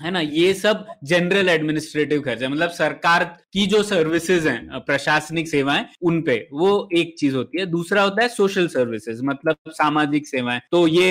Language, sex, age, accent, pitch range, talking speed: Hindi, male, 20-39, native, 145-200 Hz, 175 wpm